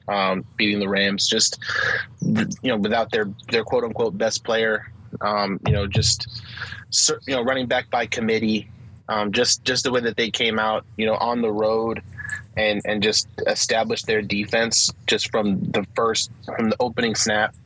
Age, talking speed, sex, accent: 20-39, 175 wpm, male, American